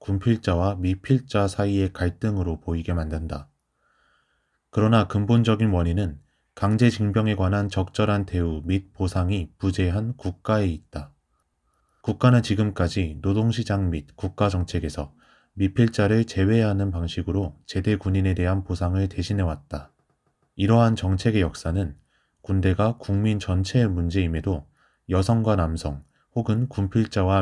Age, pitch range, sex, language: 20-39, 80-105 Hz, male, Korean